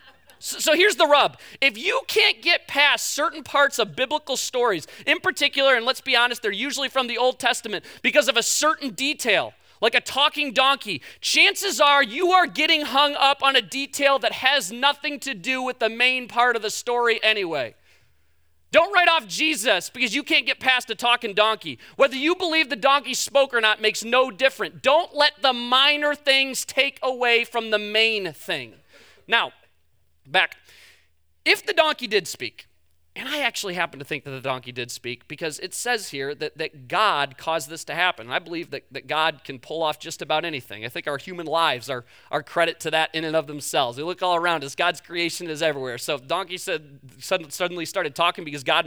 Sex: male